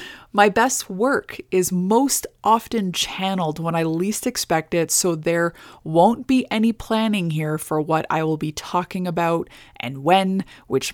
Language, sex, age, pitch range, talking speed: English, female, 20-39, 155-195 Hz, 160 wpm